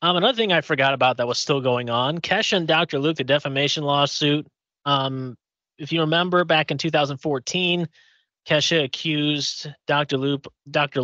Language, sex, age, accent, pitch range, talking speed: English, male, 30-49, American, 135-170 Hz, 165 wpm